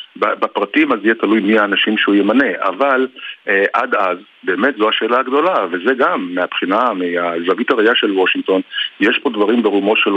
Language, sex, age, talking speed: Hebrew, male, 50-69, 165 wpm